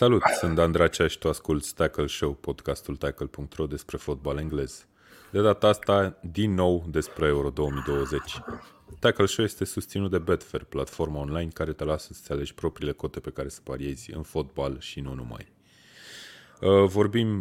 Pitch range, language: 75-90 Hz, Romanian